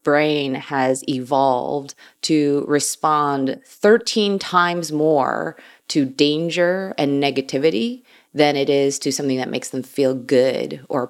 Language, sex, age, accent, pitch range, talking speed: English, female, 30-49, American, 135-175 Hz, 125 wpm